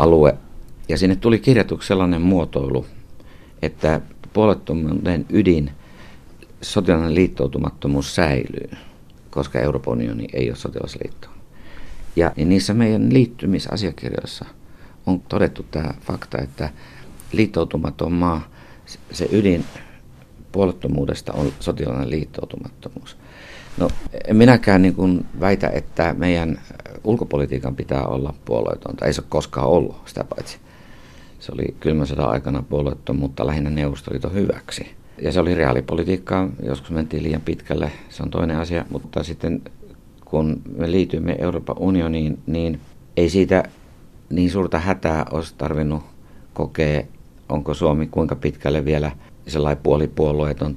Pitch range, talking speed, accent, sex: 75-90 Hz, 120 wpm, native, male